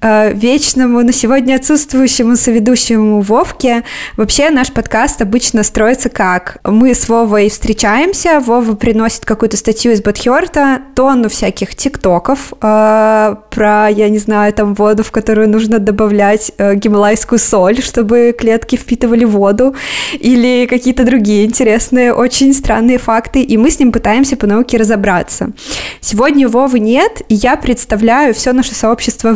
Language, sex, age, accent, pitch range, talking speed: Russian, female, 20-39, native, 210-250 Hz, 135 wpm